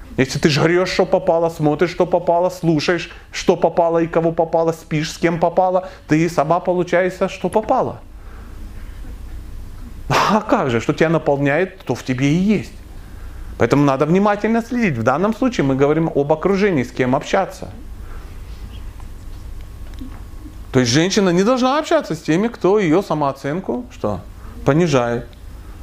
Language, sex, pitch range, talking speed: Russian, male, 105-170 Hz, 140 wpm